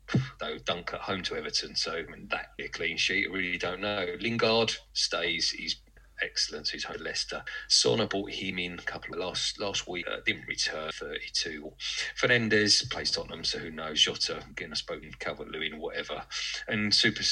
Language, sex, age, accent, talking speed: English, male, 30-49, British, 195 wpm